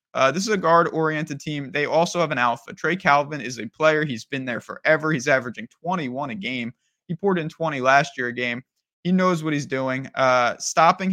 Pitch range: 135-170 Hz